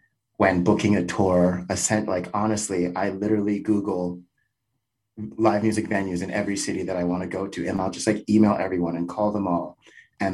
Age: 30-49